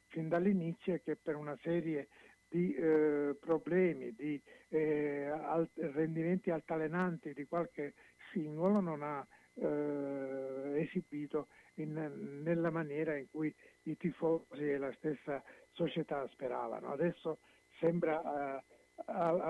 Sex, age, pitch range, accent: male, 60-79, 145-170 Hz, native